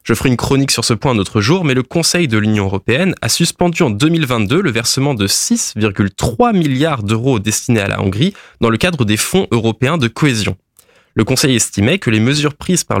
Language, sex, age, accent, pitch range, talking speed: French, male, 20-39, French, 110-160 Hz, 210 wpm